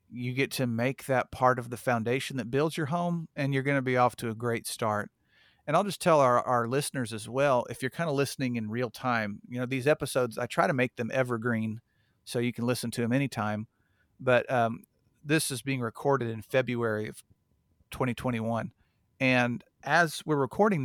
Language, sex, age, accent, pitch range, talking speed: English, male, 40-59, American, 115-135 Hz, 205 wpm